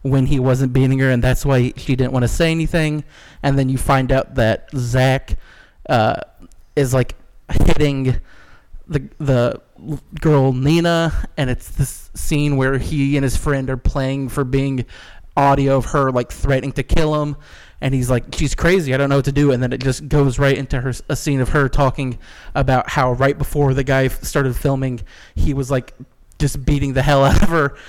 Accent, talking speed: American, 195 wpm